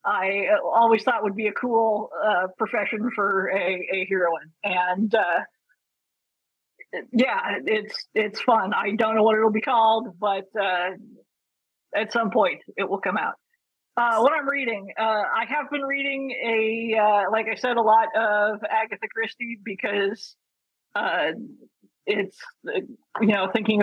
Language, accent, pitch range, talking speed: English, American, 205-240 Hz, 155 wpm